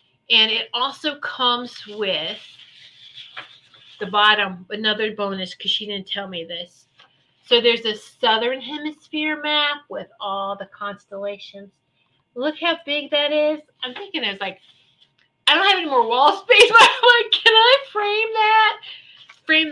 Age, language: 30-49, English